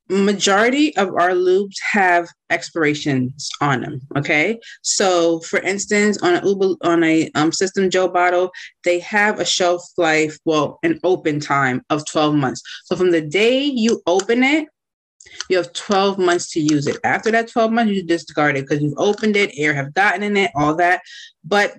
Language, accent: English, American